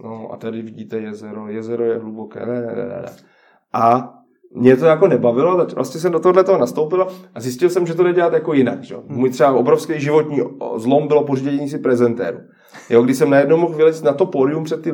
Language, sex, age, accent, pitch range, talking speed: Czech, male, 30-49, native, 120-155 Hz, 200 wpm